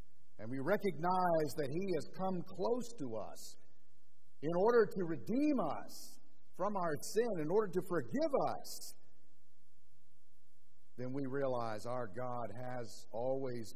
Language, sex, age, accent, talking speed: English, male, 50-69, American, 130 wpm